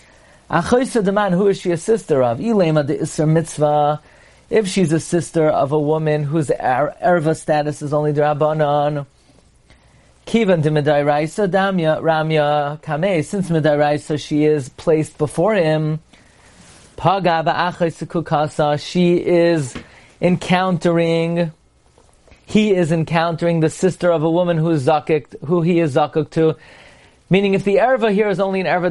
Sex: male